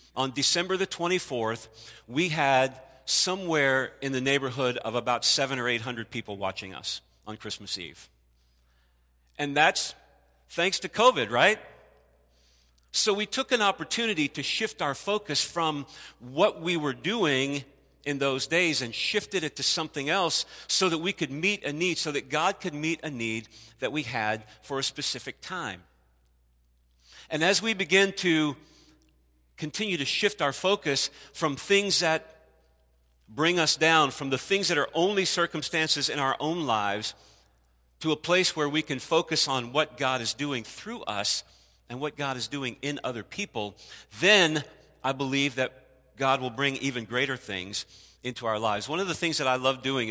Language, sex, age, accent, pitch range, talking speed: English, male, 50-69, American, 110-160 Hz, 170 wpm